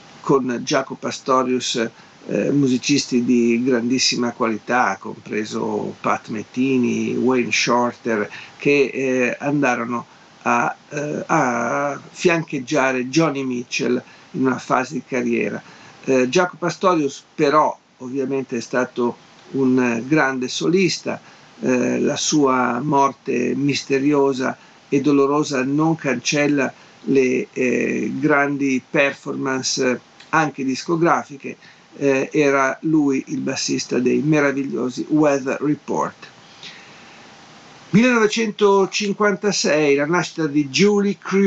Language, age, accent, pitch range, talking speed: Italian, 50-69, native, 125-155 Hz, 90 wpm